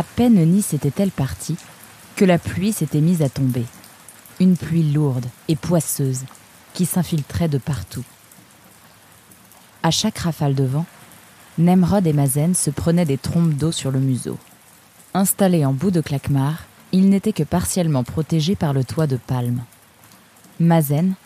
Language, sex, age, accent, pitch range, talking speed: French, female, 20-39, French, 140-220 Hz, 150 wpm